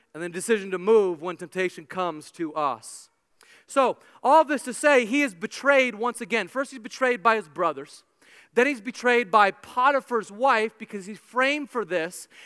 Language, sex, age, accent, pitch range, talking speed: English, male, 30-49, American, 220-265 Hz, 185 wpm